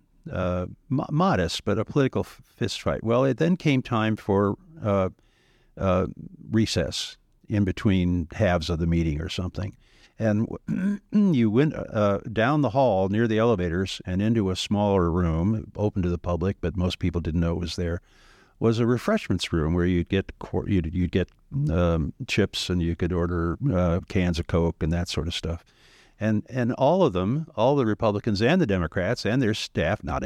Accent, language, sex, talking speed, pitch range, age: American, English, male, 175 wpm, 90-130 Hz, 50-69